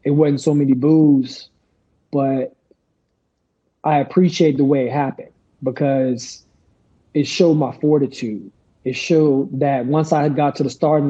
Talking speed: 145 wpm